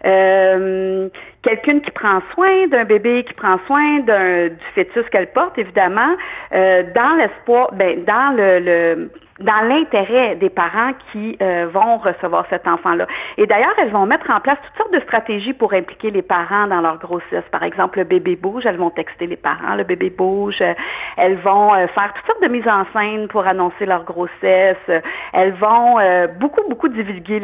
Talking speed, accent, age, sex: 180 wpm, Canadian, 50-69, female